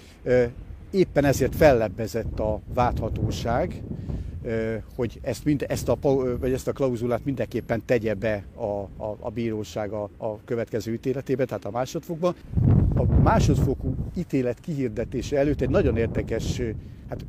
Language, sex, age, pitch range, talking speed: Hungarian, male, 60-79, 115-140 Hz, 130 wpm